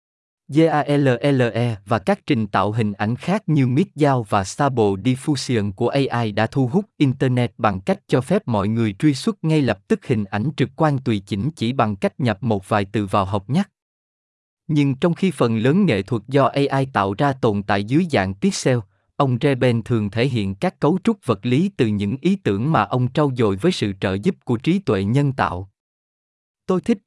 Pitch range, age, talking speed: 110-150 Hz, 20-39, 200 wpm